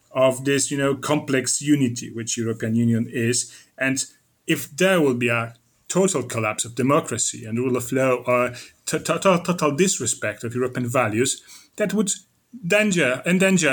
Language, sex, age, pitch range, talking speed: Polish, male, 30-49, 120-155 Hz, 145 wpm